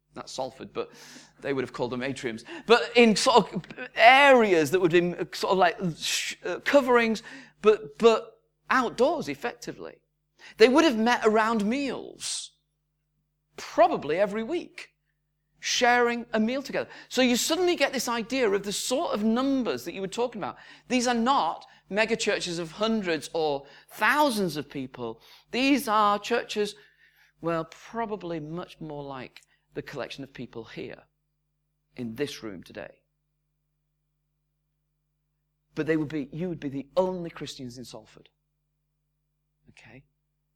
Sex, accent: male, British